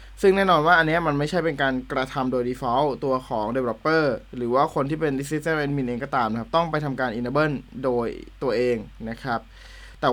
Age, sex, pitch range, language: 20-39, male, 125-160 Hz, Thai